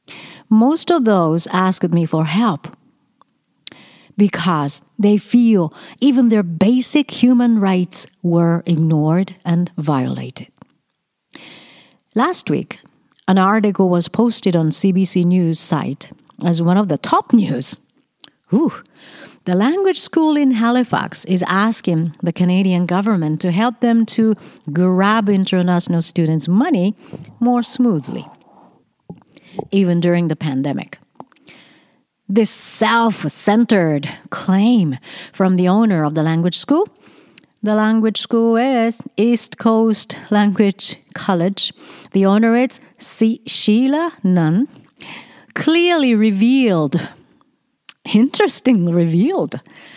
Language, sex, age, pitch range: Japanese, female, 50-69, 175-230 Hz